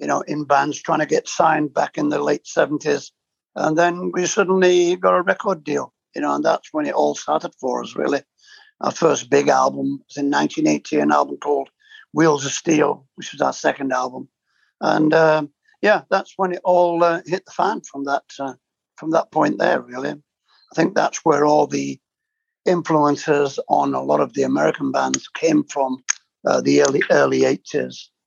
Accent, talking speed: British, 190 wpm